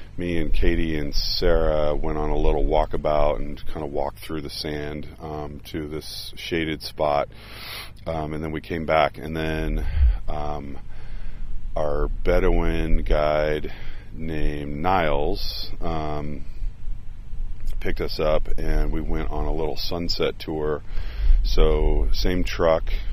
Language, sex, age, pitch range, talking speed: English, male, 40-59, 75-85 Hz, 130 wpm